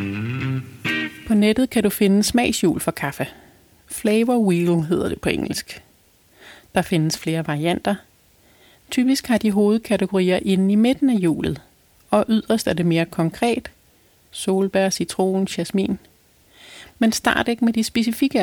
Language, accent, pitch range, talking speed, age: Danish, native, 180-225 Hz, 135 wpm, 30-49